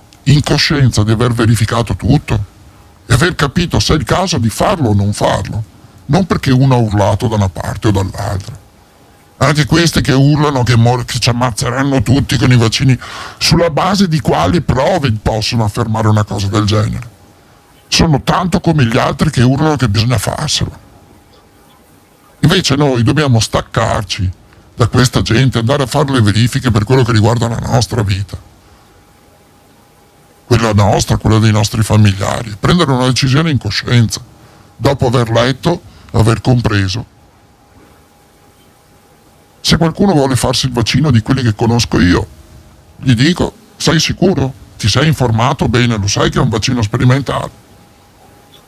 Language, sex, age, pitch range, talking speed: Italian, female, 50-69, 105-135 Hz, 150 wpm